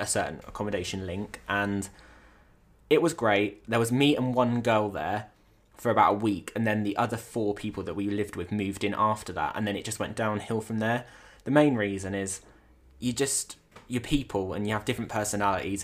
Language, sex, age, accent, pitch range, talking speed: English, male, 20-39, British, 100-115 Hz, 205 wpm